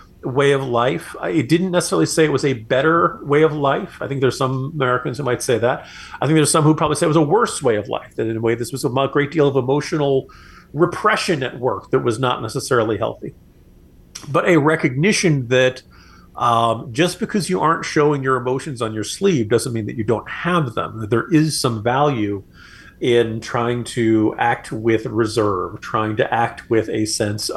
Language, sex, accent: English, male, American